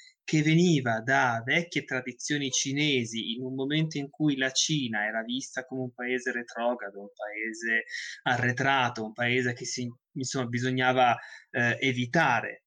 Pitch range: 125-155 Hz